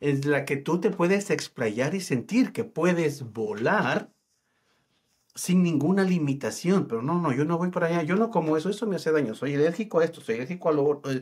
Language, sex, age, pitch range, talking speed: Spanish, male, 50-69, 120-170 Hz, 210 wpm